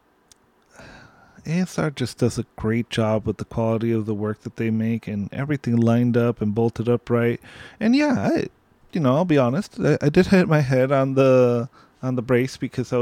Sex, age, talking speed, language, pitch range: male, 20-39, 205 wpm, English, 115-150 Hz